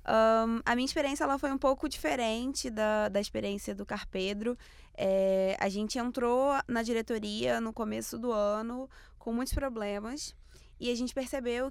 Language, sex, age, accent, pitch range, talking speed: Portuguese, female, 20-39, Brazilian, 215-255 Hz, 165 wpm